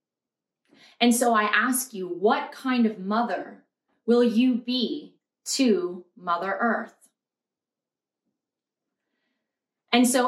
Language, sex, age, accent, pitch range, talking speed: English, female, 20-39, American, 205-240 Hz, 100 wpm